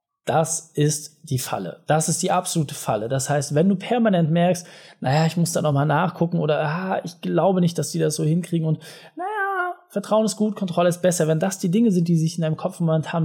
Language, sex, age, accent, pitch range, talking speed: German, male, 20-39, German, 145-185 Hz, 225 wpm